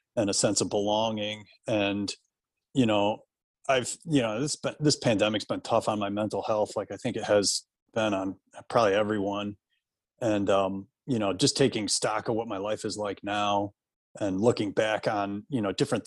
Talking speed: 185 wpm